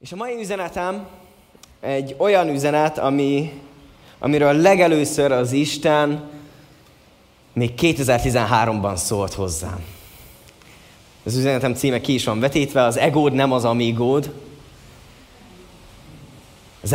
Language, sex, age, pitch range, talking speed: Hungarian, male, 20-39, 115-155 Hz, 100 wpm